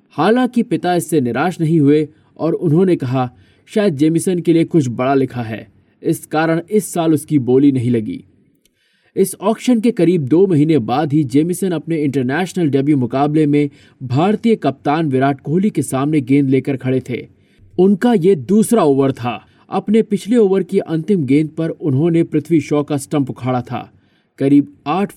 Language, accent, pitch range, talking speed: Hindi, native, 140-175 Hz, 165 wpm